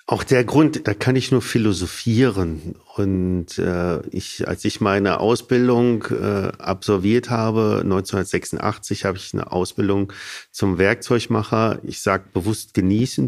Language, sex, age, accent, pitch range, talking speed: German, male, 40-59, German, 100-120 Hz, 130 wpm